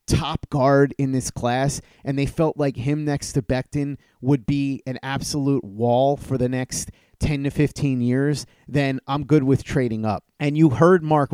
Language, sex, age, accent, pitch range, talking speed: English, male, 30-49, American, 125-150 Hz, 185 wpm